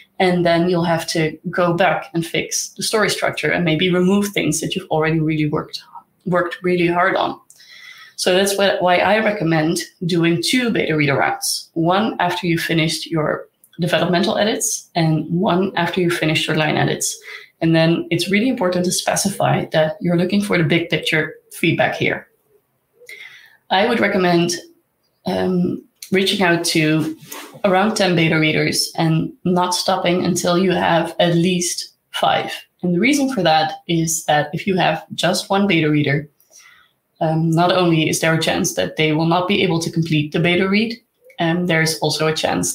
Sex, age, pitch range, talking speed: female, 20-39, 160-190 Hz, 175 wpm